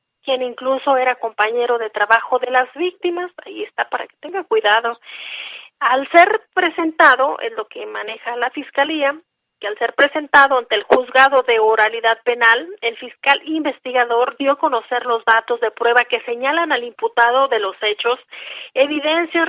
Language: Spanish